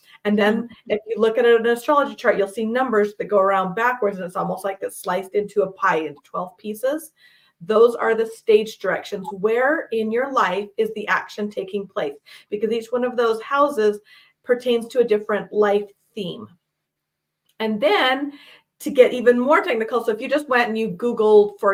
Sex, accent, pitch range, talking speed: female, American, 200-250 Hz, 195 wpm